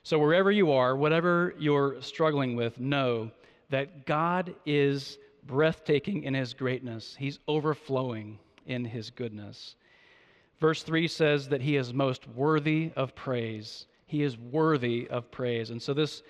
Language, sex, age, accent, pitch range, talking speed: English, male, 40-59, American, 135-170 Hz, 145 wpm